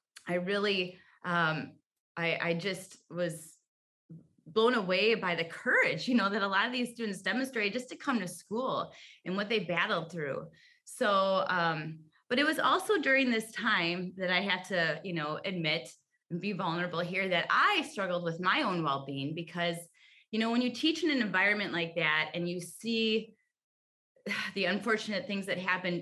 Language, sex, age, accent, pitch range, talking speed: English, female, 20-39, American, 175-225 Hz, 180 wpm